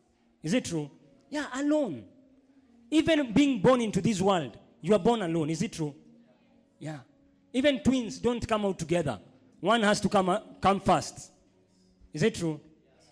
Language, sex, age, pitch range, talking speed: English, male, 30-49, 195-270 Hz, 160 wpm